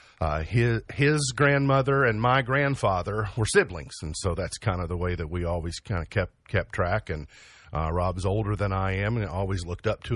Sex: male